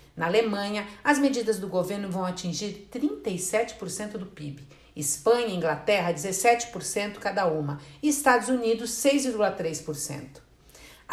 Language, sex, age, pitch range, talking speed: Portuguese, female, 50-69, 180-250 Hz, 115 wpm